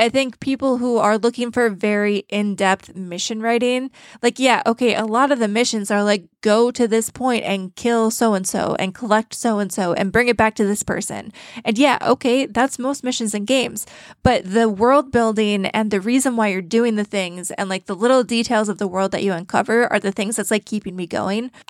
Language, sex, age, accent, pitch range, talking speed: English, female, 20-39, American, 200-240 Hz, 215 wpm